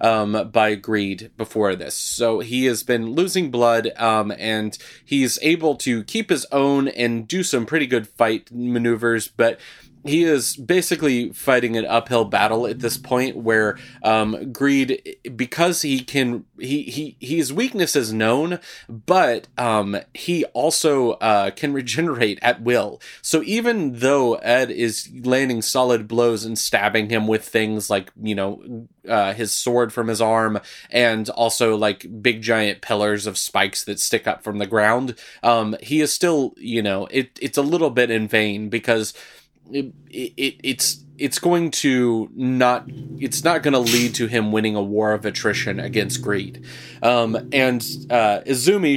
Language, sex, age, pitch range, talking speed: English, male, 30-49, 110-130 Hz, 165 wpm